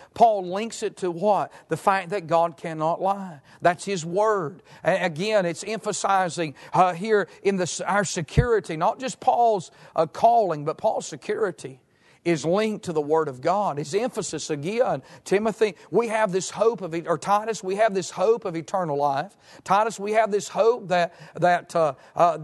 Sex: male